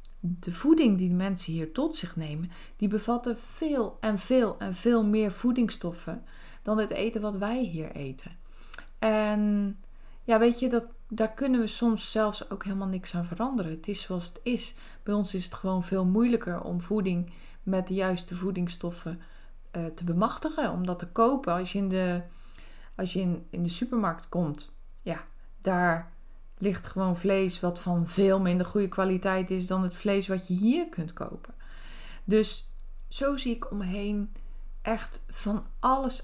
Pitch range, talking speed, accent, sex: 180-230 Hz, 170 wpm, Dutch, female